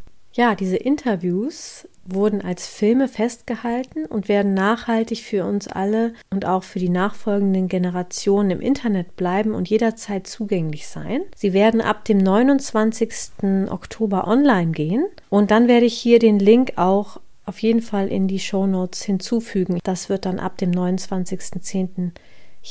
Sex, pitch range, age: female, 190-230 Hz, 40-59